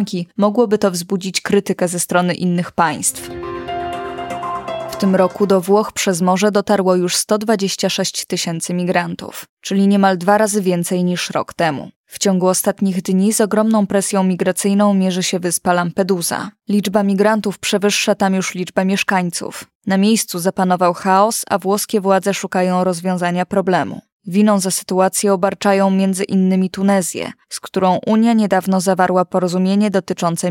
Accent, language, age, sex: native, Polish, 20-39, female